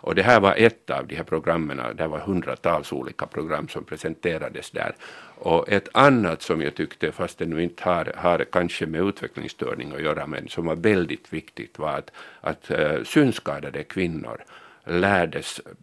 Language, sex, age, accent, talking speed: Finnish, male, 50-69, native, 165 wpm